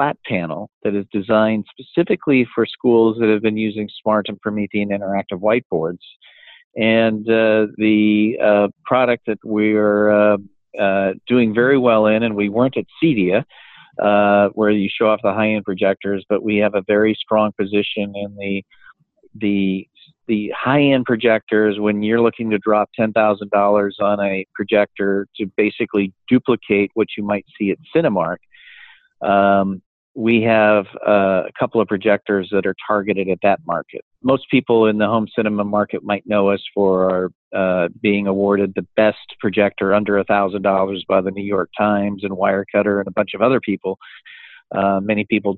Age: 50-69